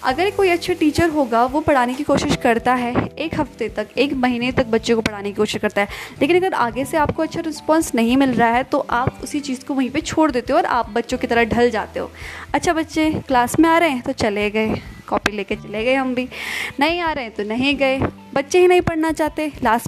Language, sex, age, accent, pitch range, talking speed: English, female, 20-39, Indian, 230-290 Hz, 170 wpm